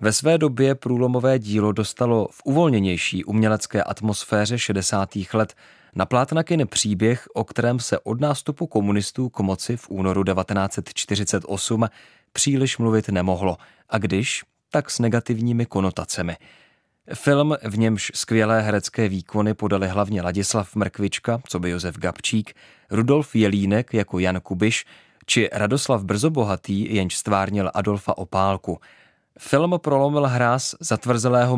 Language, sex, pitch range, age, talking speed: Czech, male, 100-125 Hz, 30-49, 125 wpm